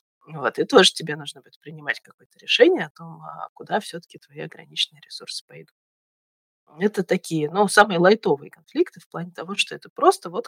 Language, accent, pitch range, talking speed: Russian, native, 165-215 Hz, 165 wpm